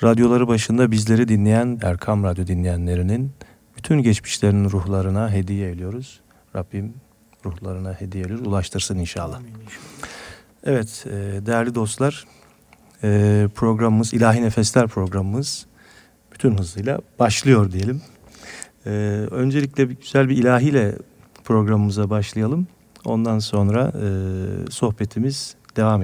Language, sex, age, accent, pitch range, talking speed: Turkish, male, 40-59, native, 100-120 Hz, 90 wpm